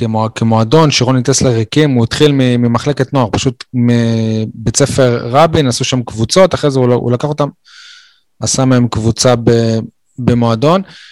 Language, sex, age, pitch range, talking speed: Hebrew, male, 20-39, 120-145 Hz, 145 wpm